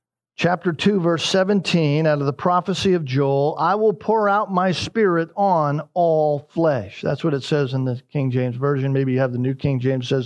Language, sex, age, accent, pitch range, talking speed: English, male, 50-69, American, 145-185 Hz, 210 wpm